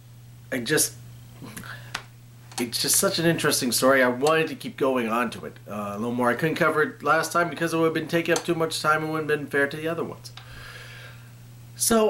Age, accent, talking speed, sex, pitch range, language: 40-59, American, 230 wpm, male, 120-140 Hz, English